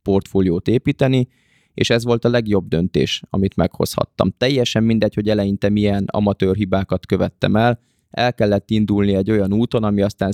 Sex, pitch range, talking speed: male, 100-115 Hz, 155 wpm